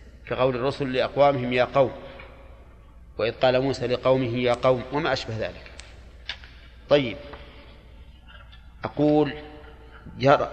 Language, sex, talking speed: Arabic, male, 95 wpm